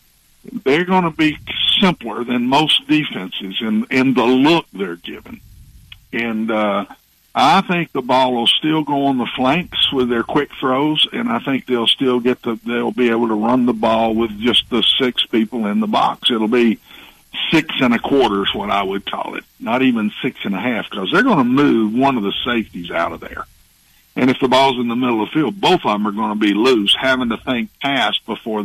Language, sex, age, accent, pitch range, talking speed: English, male, 60-79, American, 105-130 Hz, 220 wpm